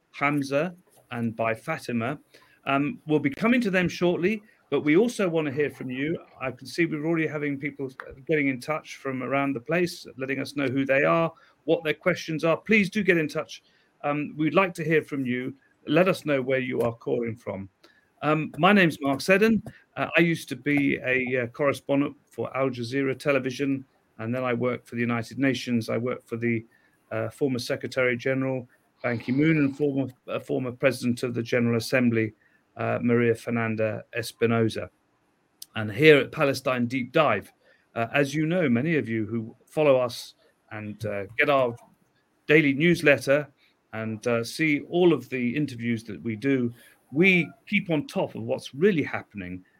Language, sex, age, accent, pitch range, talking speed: English, male, 40-59, British, 120-155 Hz, 180 wpm